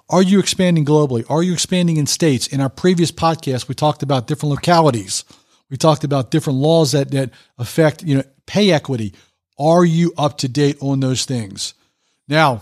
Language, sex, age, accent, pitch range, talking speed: English, male, 40-59, American, 130-165 Hz, 175 wpm